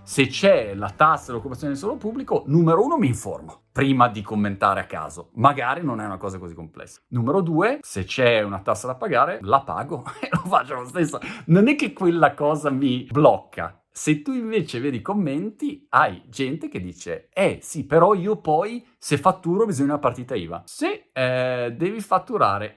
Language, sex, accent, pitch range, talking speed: Italian, male, native, 110-170 Hz, 185 wpm